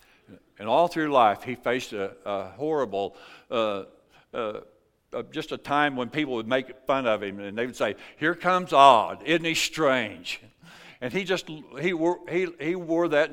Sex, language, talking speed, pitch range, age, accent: male, English, 185 wpm, 115-145 Hz, 60-79, American